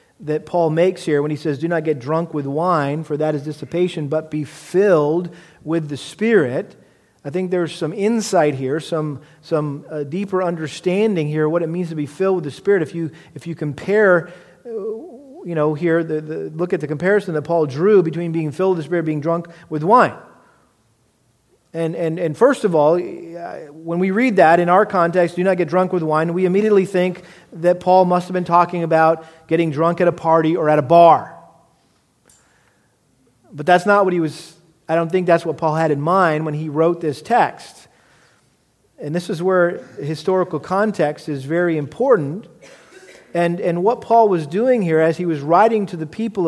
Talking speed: 200 wpm